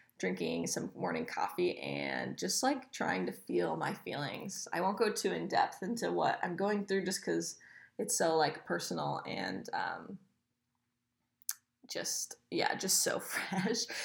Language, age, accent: English, 10-29, American